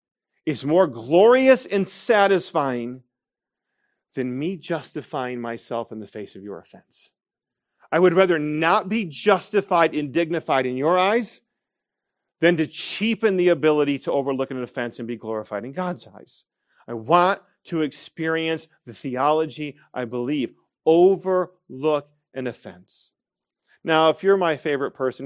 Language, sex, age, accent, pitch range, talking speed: English, male, 40-59, American, 130-185 Hz, 140 wpm